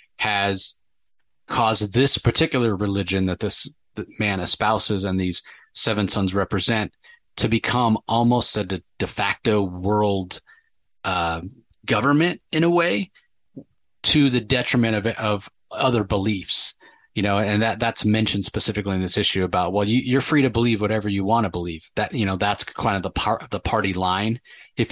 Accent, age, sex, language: American, 30-49, male, English